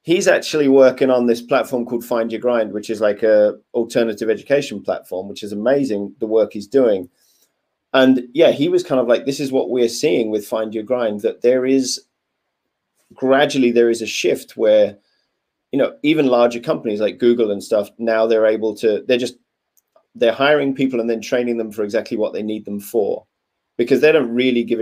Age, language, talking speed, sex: 30-49, English, 200 wpm, male